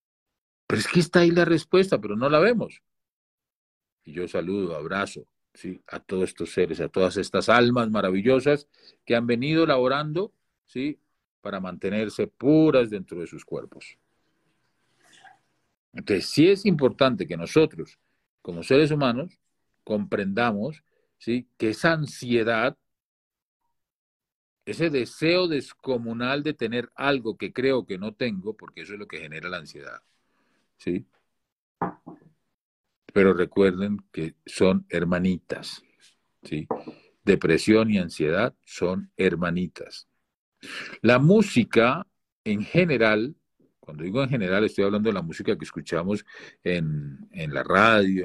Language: Spanish